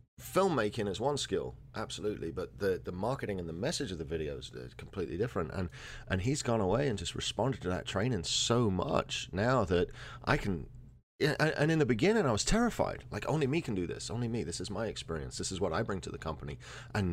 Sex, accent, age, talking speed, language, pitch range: male, British, 40-59, 220 wpm, English, 100-125 Hz